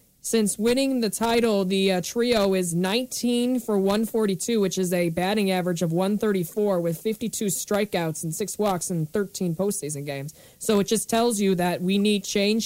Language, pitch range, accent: English, 185-215 Hz, American